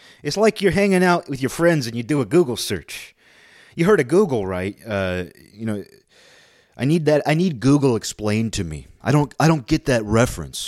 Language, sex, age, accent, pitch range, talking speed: English, male, 30-49, American, 95-130 Hz, 215 wpm